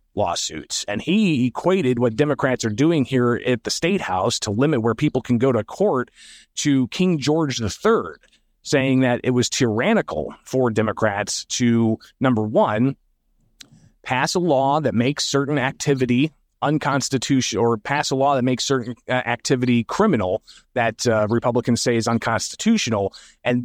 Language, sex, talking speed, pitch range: English, male, 150 wpm, 115-140 Hz